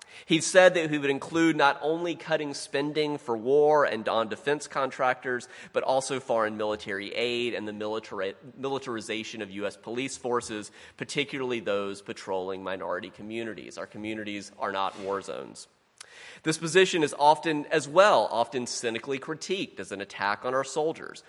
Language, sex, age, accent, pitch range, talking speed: English, male, 30-49, American, 110-145 Hz, 150 wpm